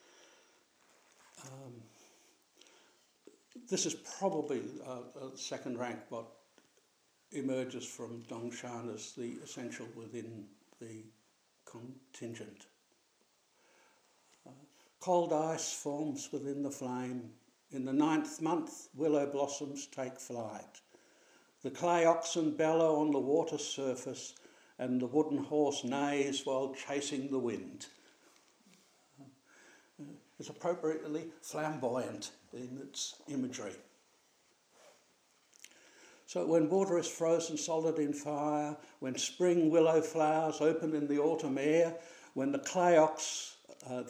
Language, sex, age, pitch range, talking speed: English, male, 60-79, 130-160 Hz, 105 wpm